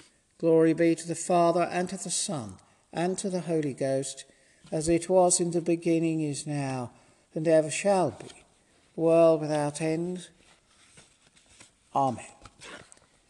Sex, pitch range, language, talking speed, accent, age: male, 140-185 Hz, English, 135 wpm, British, 60-79